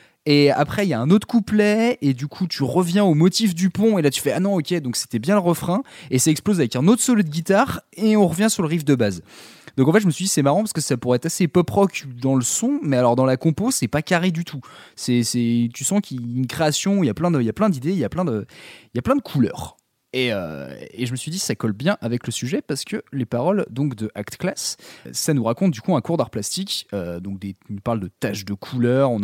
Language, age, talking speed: French, 20-39, 300 wpm